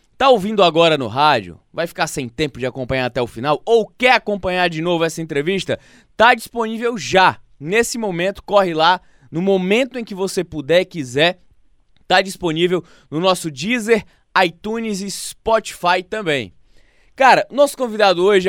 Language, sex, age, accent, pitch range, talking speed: Portuguese, male, 20-39, Brazilian, 150-210 Hz, 155 wpm